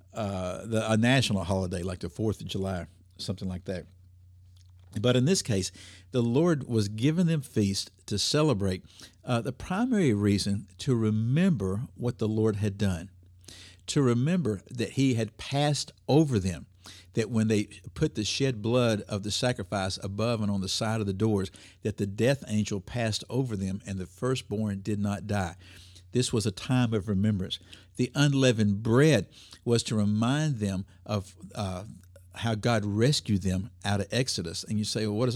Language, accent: English, American